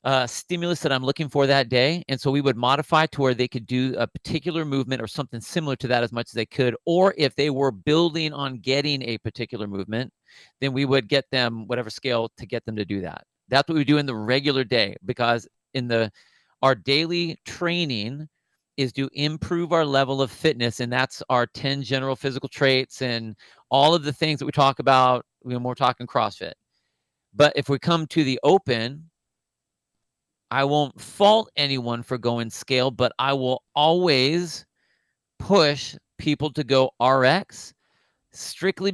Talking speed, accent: 185 wpm, American